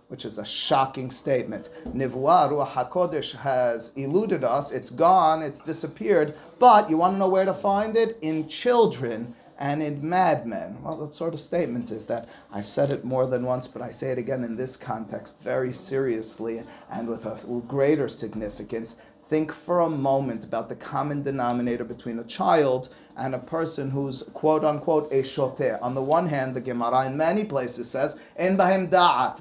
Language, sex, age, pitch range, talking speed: English, male, 30-49, 125-160 Hz, 180 wpm